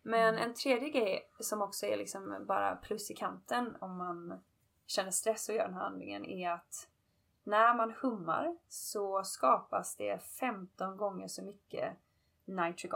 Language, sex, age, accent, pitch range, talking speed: Swedish, female, 20-39, native, 185-235 Hz, 155 wpm